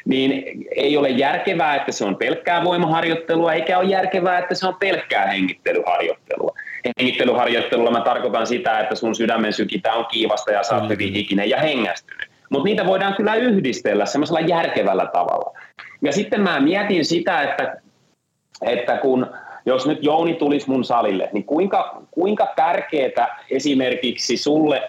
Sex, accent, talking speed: male, native, 140 wpm